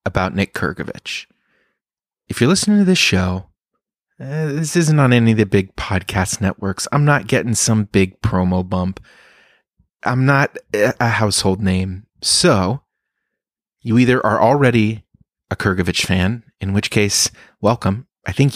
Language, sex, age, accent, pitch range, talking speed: English, male, 30-49, American, 100-135 Hz, 145 wpm